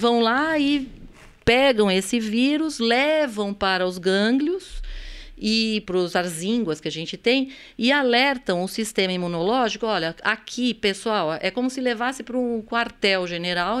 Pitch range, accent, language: 185-245 Hz, Brazilian, Portuguese